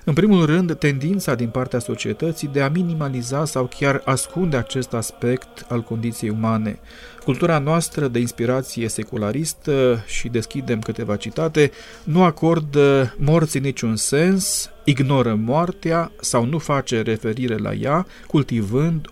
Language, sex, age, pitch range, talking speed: Romanian, male, 40-59, 120-155 Hz, 130 wpm